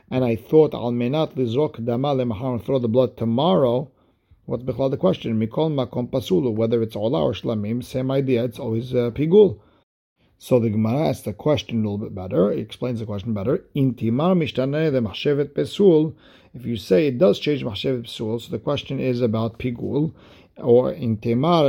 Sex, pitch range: male, 115-140 Hz